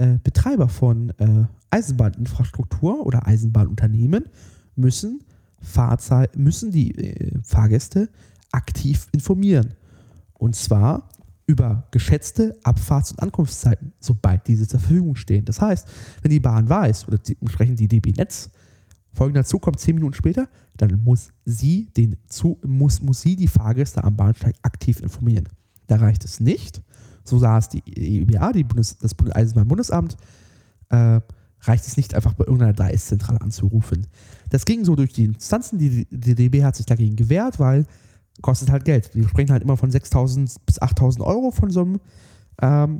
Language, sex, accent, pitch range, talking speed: German, male, German, 100-130 Hz, 155 wpm